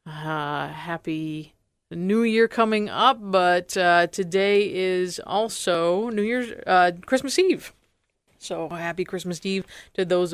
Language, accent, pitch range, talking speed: English, American, 175-225 Hz, 135 wpm